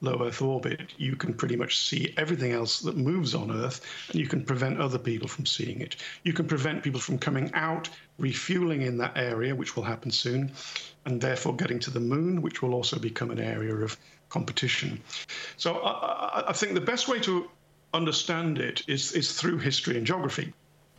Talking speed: 195 wpm